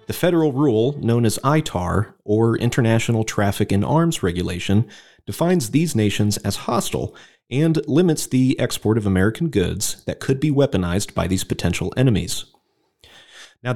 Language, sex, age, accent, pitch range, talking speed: English, male, 30-49, American, 95-135 Hz, 145 wpm